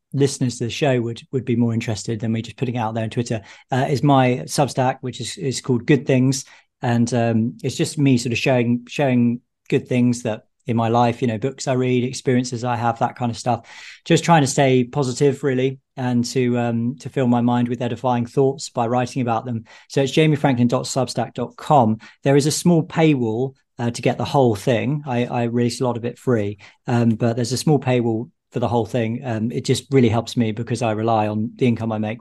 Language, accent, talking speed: English, British, 225 wpm